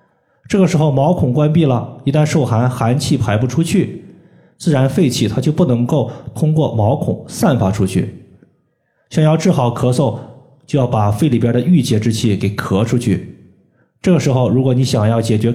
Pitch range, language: 115-155 Hz, Chinese